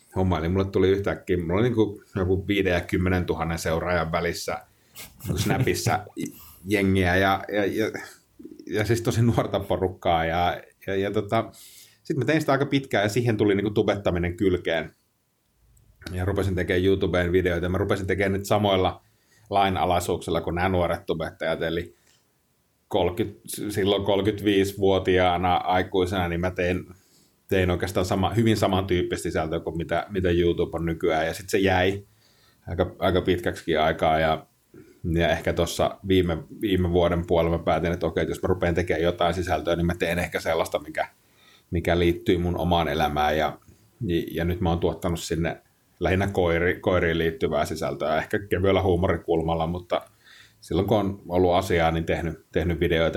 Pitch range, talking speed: 85-100 Hz, 150 wpm